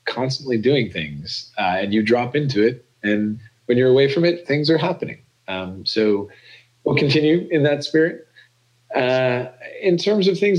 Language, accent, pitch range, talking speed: English, American, 95-130 Hz, 170 wpm